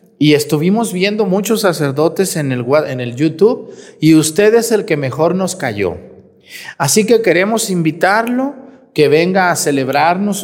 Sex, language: male, Spanish